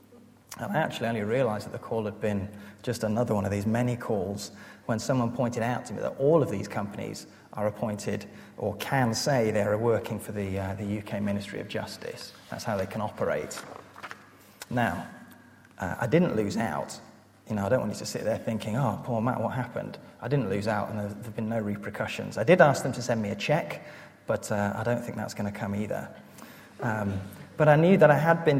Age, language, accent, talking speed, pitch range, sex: 30-49, English, British, 220 wpm, 105-125 Hz, male